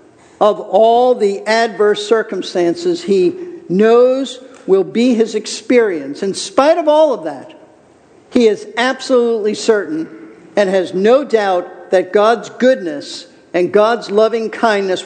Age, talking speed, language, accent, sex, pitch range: 50-69, 130 wpm, English, American, male, 175-250 Hz